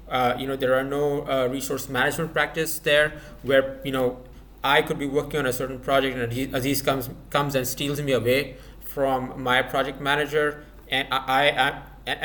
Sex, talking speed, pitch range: male, 180 wpm, 125-150 Hz